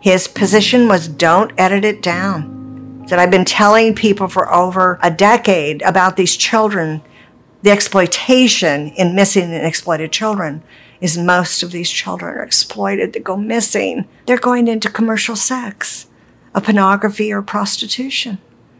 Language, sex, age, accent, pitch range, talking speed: English, female, 50-69, American, 175-215 Hz, 145 wpm